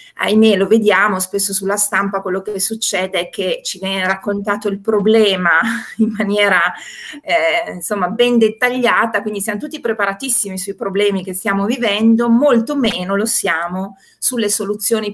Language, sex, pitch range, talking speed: Italian, female, 190-225 Hz, 145 wpm